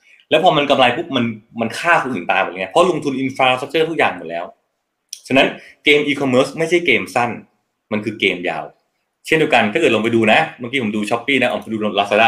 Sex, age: male, 20-39